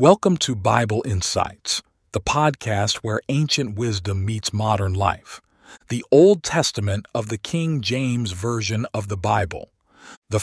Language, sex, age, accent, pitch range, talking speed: English, male, 50-69, American, 105-135 Hz, 140 wpm